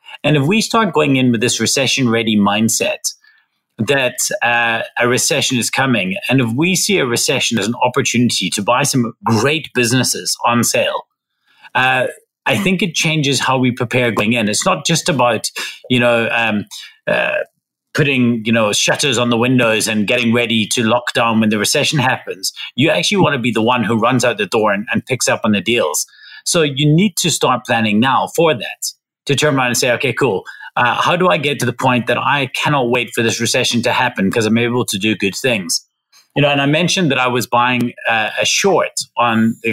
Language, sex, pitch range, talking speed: English, male, 115-145 Hz, 210 wpm